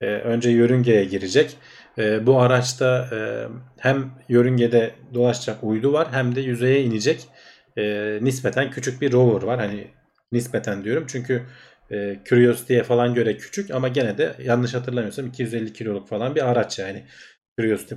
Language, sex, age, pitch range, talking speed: Turkish, male, 40-59, 110-130 Hz, 145 wpm